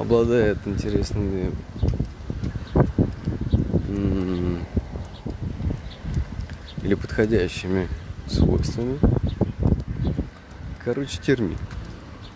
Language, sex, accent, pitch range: Russian, male, native, 85-115 Hz